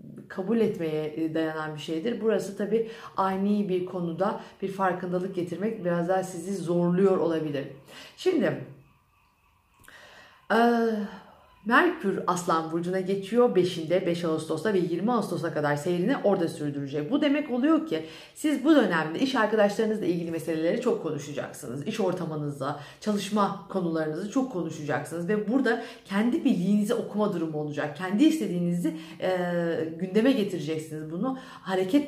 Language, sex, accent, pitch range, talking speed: Turkish, female, native, 165-225 Hz, 125 wpm